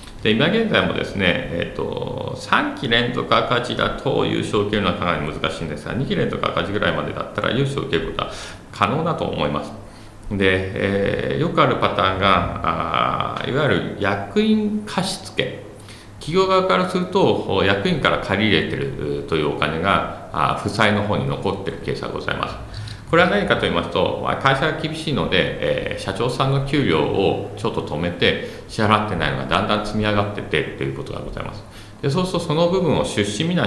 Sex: male